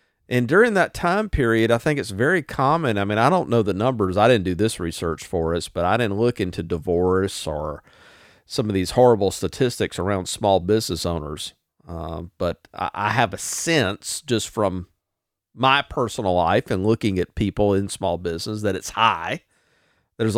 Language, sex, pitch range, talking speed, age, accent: English, male, 95-135 Hz, 185 wpm, 50-69, American